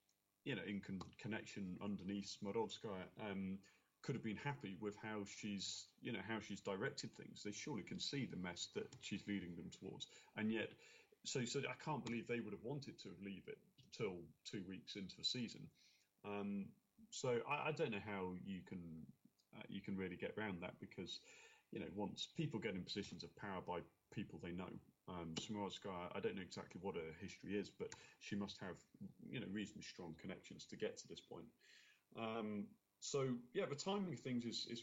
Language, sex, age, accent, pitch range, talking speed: English, male, 30-49, British, 100-130 Hz, 200 wpm